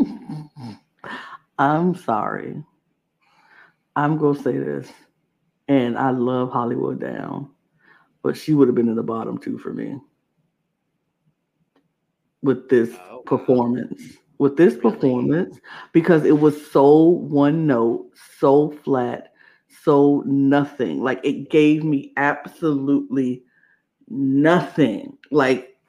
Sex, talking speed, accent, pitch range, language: female, 105 wpm, American, 140-170 Hz, English